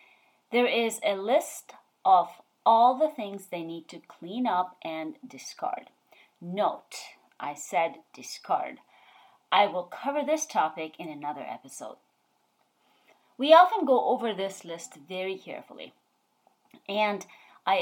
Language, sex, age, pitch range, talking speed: English, female, 30-49, 165-250 Hz, 125 wpm